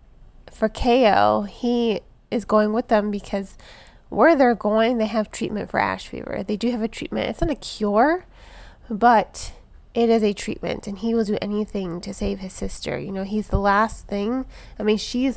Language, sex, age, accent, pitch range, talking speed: English, female, 20-39, American, 200-235 Hz, 190 wpm